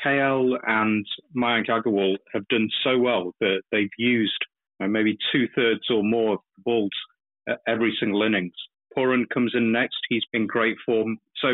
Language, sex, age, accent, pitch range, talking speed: English, male, 30-49, British, 105-120 Hz, 170 wpm